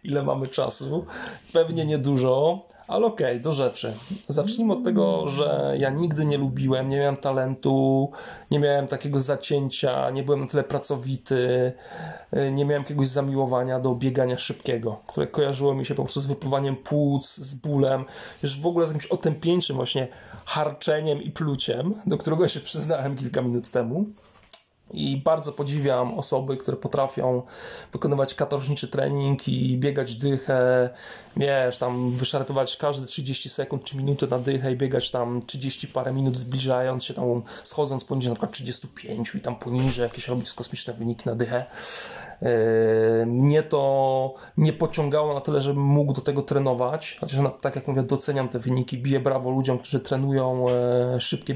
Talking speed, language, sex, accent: 155 wpm, Polish, male, native